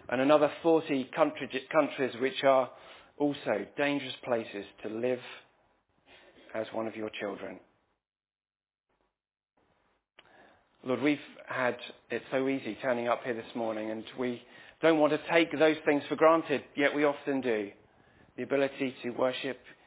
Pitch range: 120-145 Hz